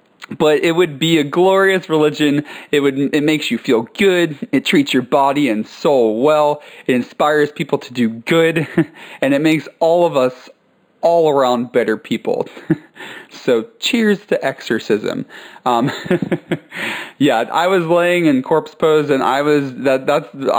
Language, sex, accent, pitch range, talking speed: English, male, American, 110-150 Hz, 150 wpm